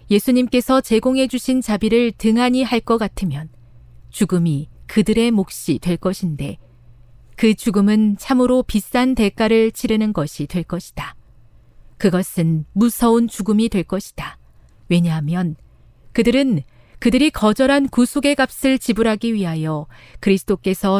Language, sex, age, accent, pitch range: Korean, female, 40-59, native, 150-235 Hz